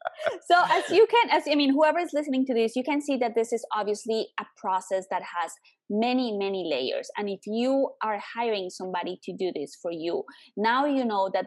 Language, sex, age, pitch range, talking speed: English, female, 20-39, 190-260 Hz, 215 wpm